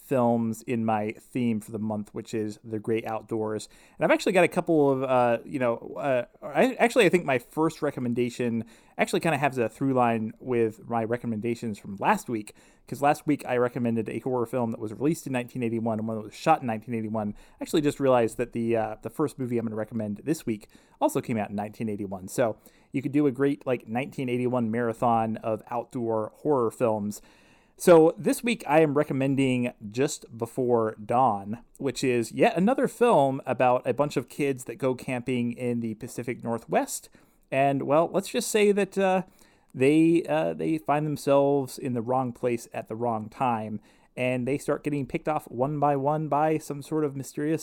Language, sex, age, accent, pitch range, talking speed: English, male, 30-49, American, 115-150 Hz, 200 wpm